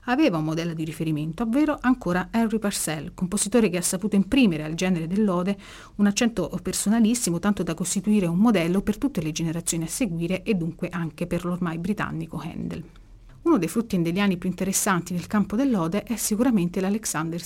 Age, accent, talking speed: 40-59, native, 170 wpm